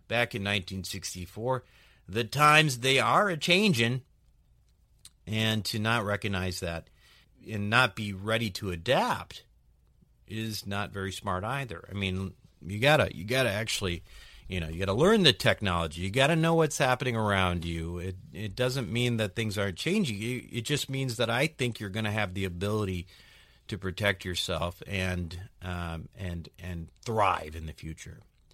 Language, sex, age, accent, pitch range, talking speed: English, male, 40-59, American, 90-125 Hz, 165 wpm